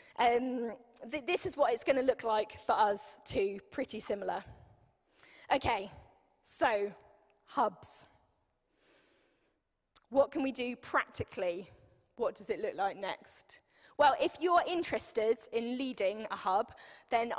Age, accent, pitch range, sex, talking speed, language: 10-29, British, 225-285 Hz, female, 130 wpm, English